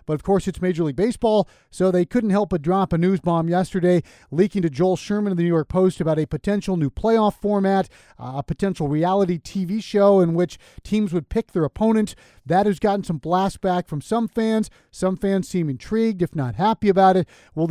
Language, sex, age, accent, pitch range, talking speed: English, male, 40-59, American, 160-200 Hz, 215 wpm